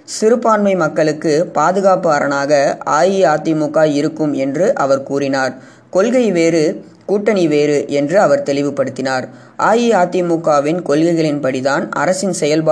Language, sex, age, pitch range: Gujarati, female, 20-39, 145-190 Hz